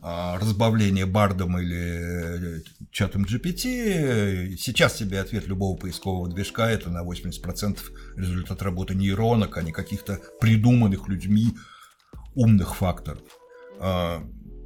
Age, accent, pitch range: 60-79, native, 95-130 Hz